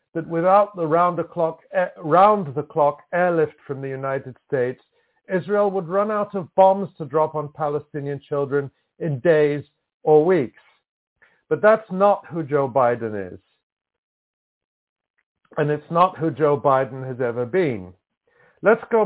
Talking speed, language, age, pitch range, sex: 140 wpm, English, 50-69, 145-185 Hz, male